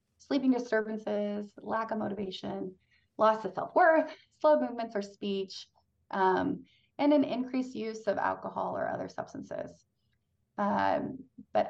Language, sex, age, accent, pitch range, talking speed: English, female, 30-49, American, 170-225 Hz, 125 wpm